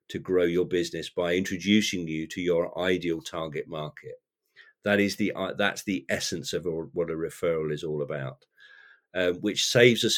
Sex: male